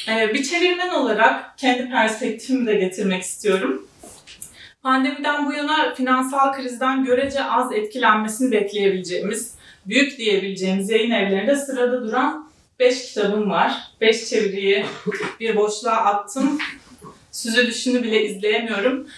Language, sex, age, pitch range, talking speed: Turkish, female, 30-49, 210-260 Hz, 105 wpm